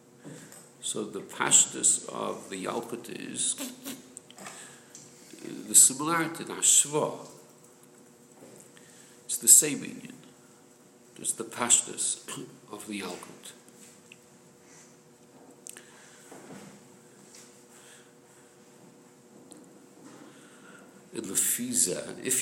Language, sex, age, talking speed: English, male, 60-79, 70 wpm